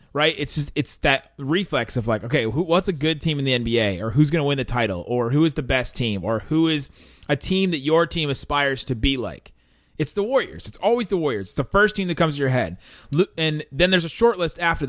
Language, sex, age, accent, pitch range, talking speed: English, male, 30-49, American, 115-165 Hz, 260 wpm